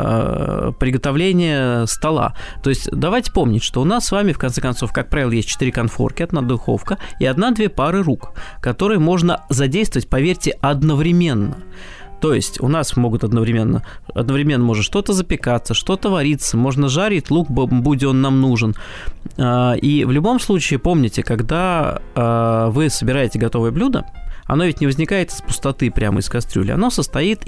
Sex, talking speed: male, 155 wpm